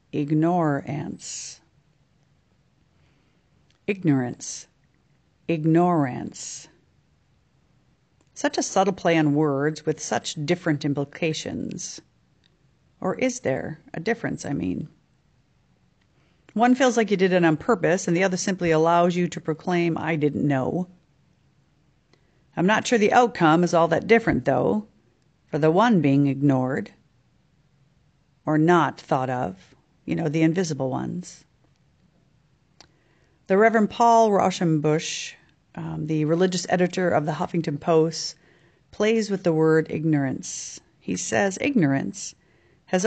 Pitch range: 150-195 Hz